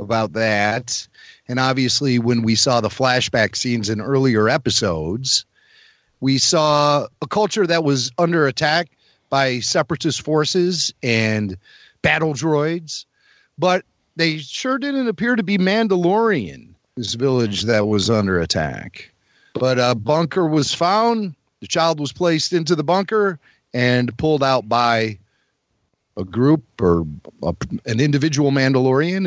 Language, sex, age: English, male, 40-59